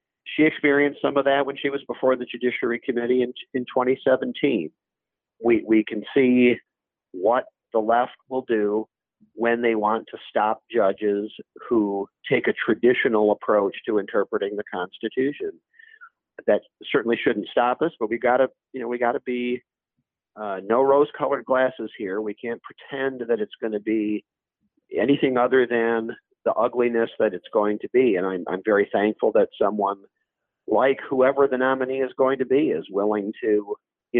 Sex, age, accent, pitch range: male, 50-69, American, 110-140 Hz